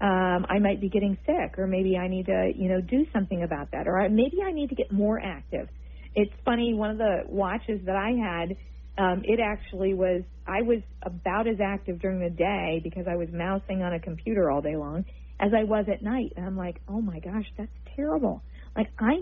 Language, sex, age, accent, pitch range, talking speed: English, female, 40-59, American, 175-220 Hz, 225 wpm